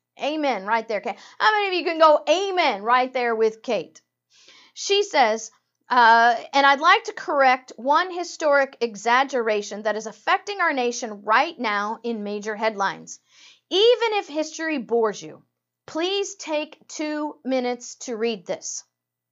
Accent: American